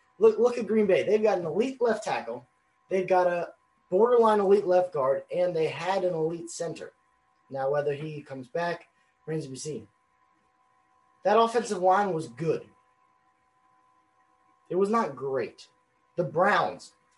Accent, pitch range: American, 135-185 Hz